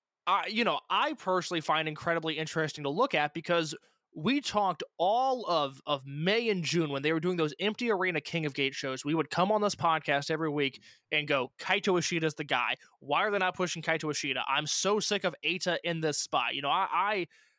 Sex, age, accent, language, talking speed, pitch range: male, 20-39, American, English, 220 wpm, 150-185 Hz